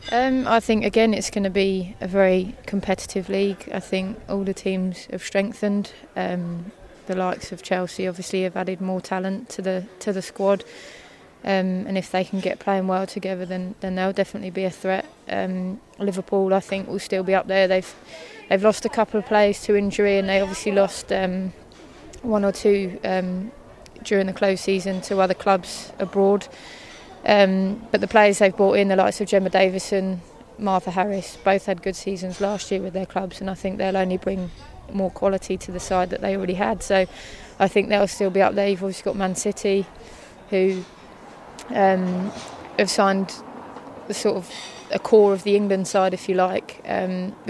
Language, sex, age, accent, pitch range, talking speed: English, female, 20-39, British, 185-200 Hz, 195 wpm